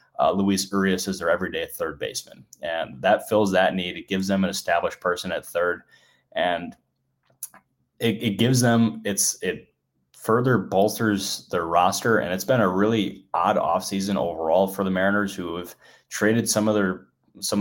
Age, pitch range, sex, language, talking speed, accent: 20-39, 90-105 Hz, male, English, 170 wpm, American